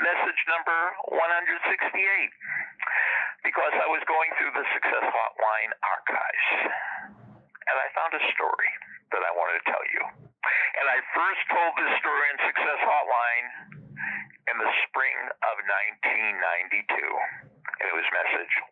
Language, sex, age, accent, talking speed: English, male, 50-69, American, 130 wpm